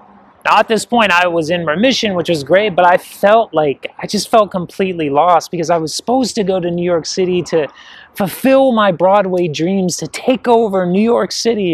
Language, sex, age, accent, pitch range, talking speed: English, male, 30-49, American, 145-205 Hz, 210 wpm